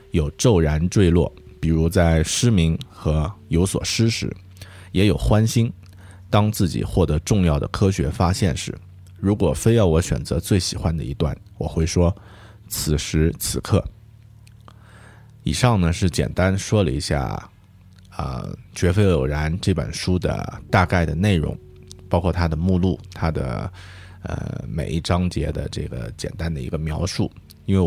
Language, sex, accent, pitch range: Chinese, male, native, 80-100 Hz